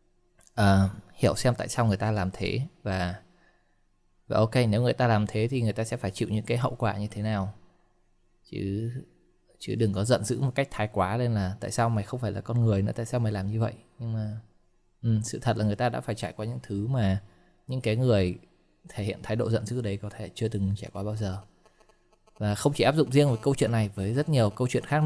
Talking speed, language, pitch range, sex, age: 255 wpm, Vietnamese, 100-125 Hz, male, 20-39